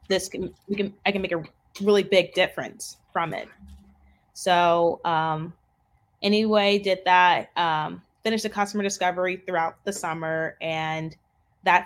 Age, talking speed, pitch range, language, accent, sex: 20-39, 140 wpm, 160-185 Hz, English, American, female